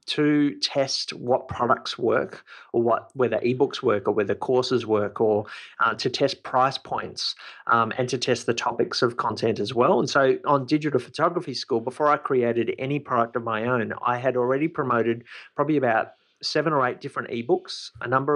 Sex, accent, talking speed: male, Australian, 185 wpm